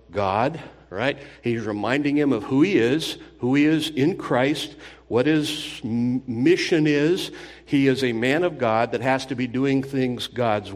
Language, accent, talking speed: English, American, 175 wpm